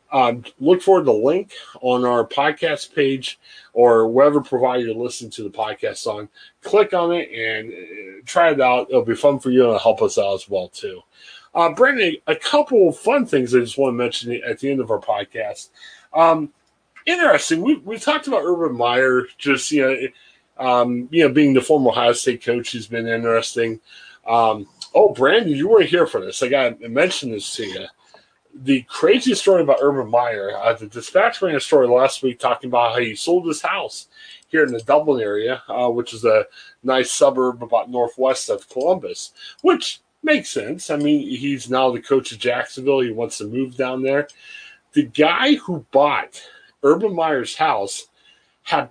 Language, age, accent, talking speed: English, 30-49, American, 190 wpm